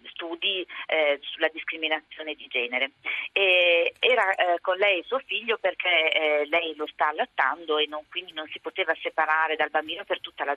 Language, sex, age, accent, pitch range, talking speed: Italian, female, 40-59, native, 155-190 Hz, 175 wpm